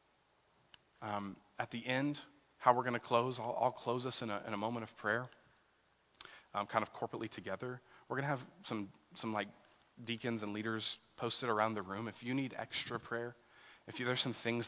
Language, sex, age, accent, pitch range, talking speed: English, male, 30-49, American, 110-130 Hz, 200 wpm